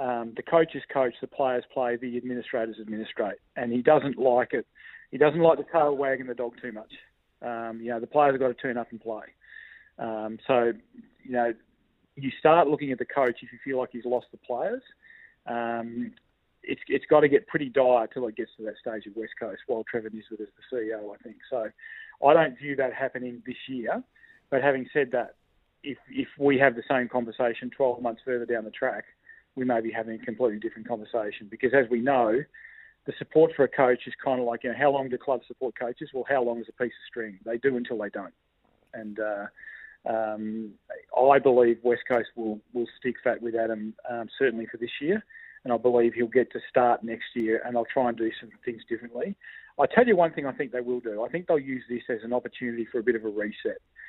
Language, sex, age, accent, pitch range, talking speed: English, male, 30-49, Australian, 115-140 Hz, 230 wpm